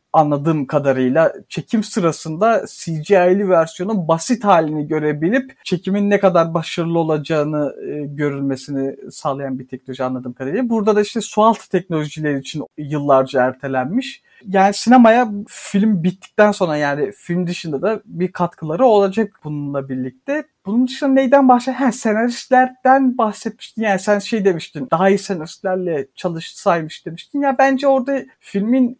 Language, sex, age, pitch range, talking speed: Turkish, male, 50-69, 160-230 Hz, 130 wpm